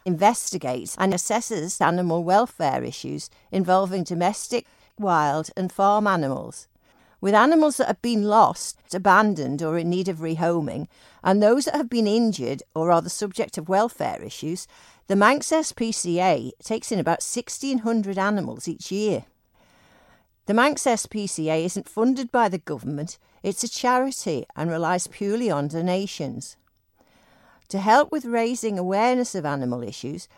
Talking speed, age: 140 wpm, 50-69